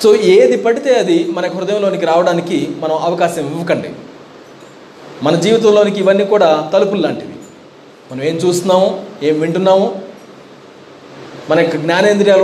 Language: Telugu